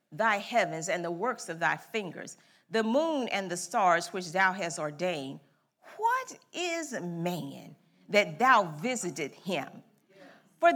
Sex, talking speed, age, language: female, 140 wpm, 40-59, English